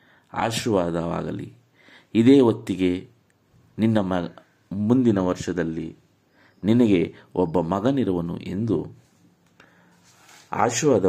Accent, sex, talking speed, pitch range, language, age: native, male, 65 wpm, 85-115 Hz, Kannada, 50-69